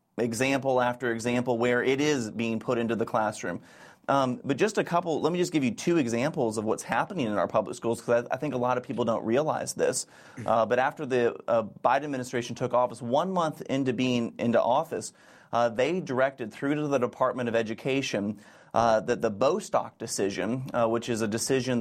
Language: English